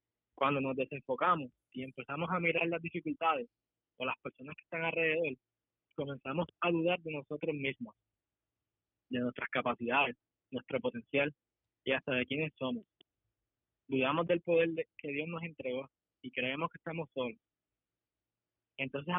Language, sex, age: Spanish, male, 20-39